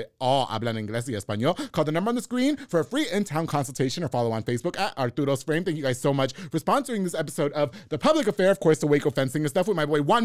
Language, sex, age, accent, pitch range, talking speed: English, male, 30-49, American, 145-205 Hz, 275 wpm